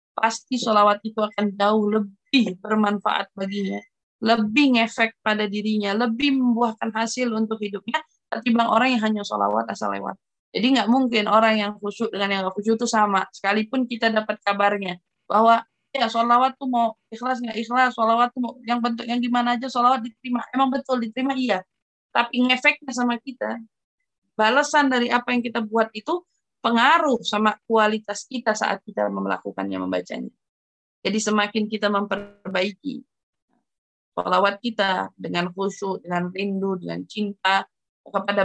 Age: 20-39